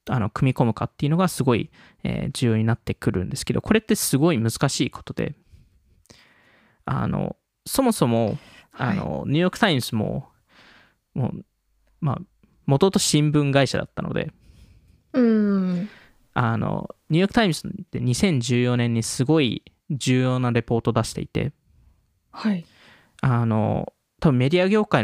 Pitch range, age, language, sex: 115-165 Hz, 20-39, Japanese, male